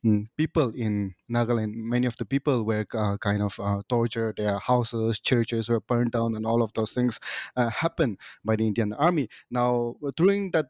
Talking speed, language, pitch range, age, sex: 185 wpm, English, 110-125 Hz, 20-39, male